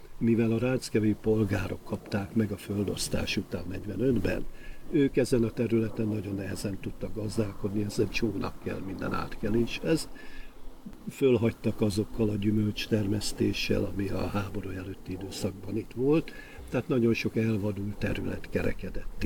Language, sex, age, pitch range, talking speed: Hungarian, male, 50-69, 100-115 Hz, 135 wpm